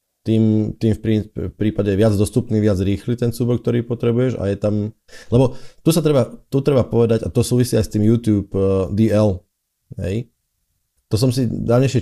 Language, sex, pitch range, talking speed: Slovak, male, 95-115 Hz, 175 wpm